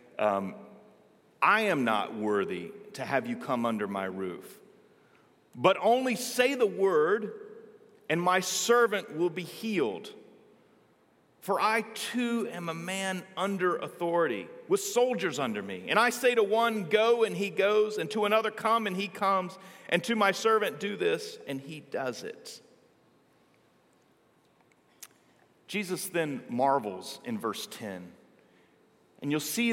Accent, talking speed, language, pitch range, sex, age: American, 140 wpm, English, 150-210 Hz, male, 40-59